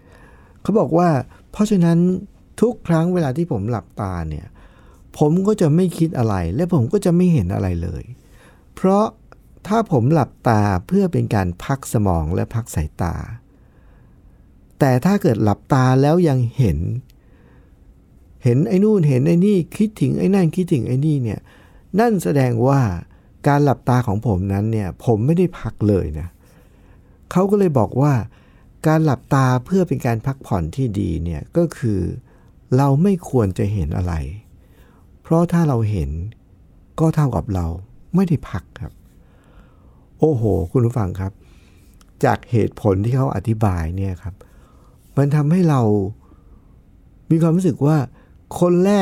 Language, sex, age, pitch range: Thai, male, 60-79, 100-165 Hz